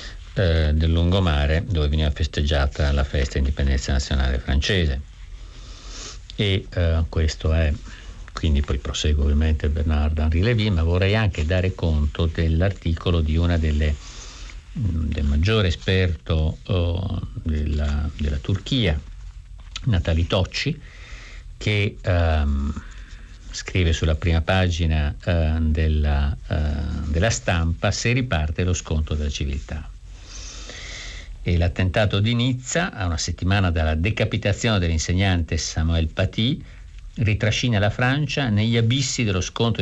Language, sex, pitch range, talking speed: Italian, male, 80-100 Hz, 115 wpm